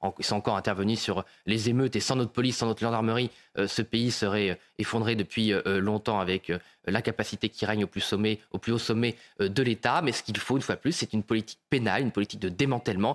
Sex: male